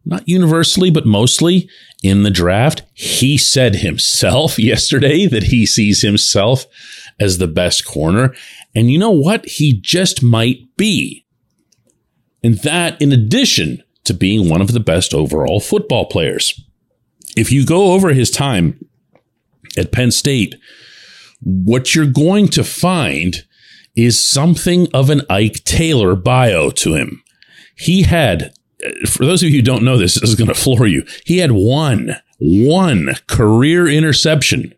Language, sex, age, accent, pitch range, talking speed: English, male, 40-59, American, 100-145 Hz, 145 wpm